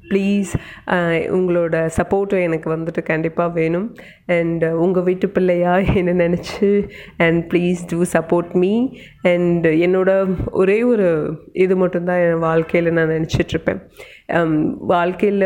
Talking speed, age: 115 wpm, 30-49